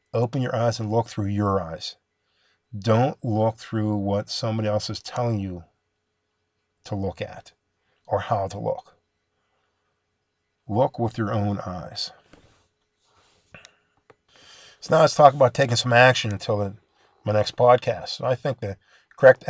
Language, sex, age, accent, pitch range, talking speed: English, male, 50-69, American, 105-130 Hz, 140 wpm